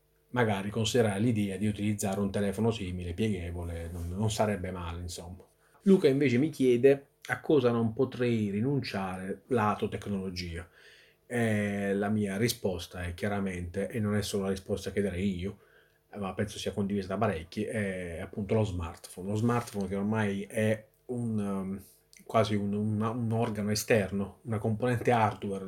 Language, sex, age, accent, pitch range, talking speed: Italian, male, 30-49, native, 100-110 Hz, 145 wpm